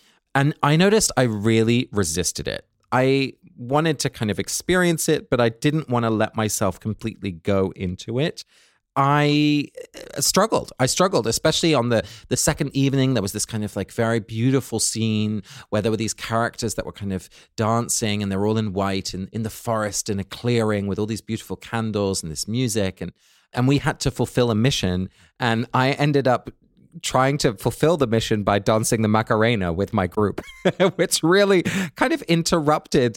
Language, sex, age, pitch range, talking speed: English, male, 30-49, 105-145 Hz, 185 wpm